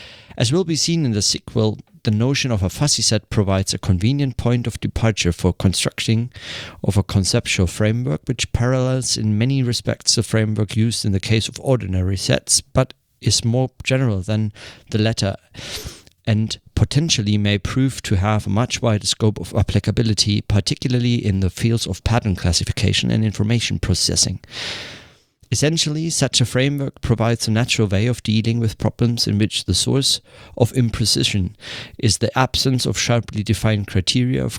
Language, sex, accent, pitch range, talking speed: German, male, German, 100-125 Hz, 165 wpm